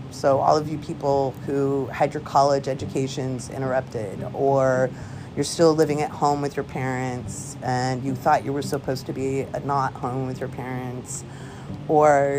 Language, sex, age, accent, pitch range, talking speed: English, female, 30-49, American, 135-175 Hz, 165 wpm